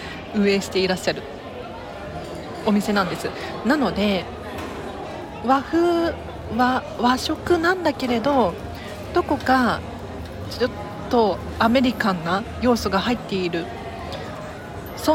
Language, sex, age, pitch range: Japanese, female, 40-59, 200-285 Hz